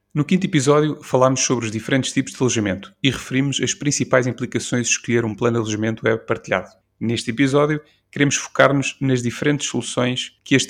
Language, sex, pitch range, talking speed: Portuguese, male, 115-140 Hz, 180 wpm